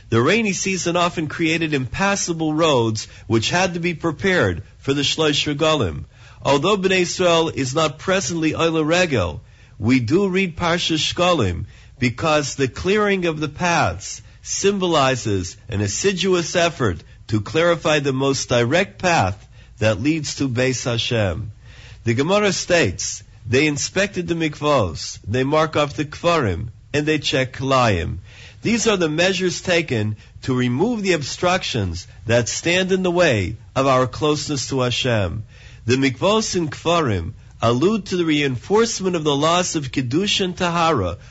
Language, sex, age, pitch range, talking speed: English, male, 50-69, 115-175 Hz, 145 wpm